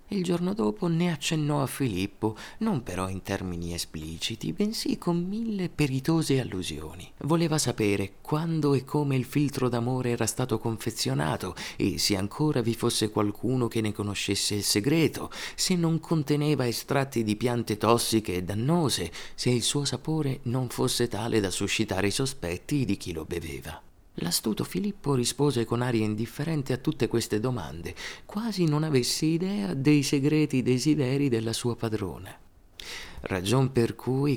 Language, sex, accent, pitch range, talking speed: Italian, male, native, 95-140 Hz, 150 wpm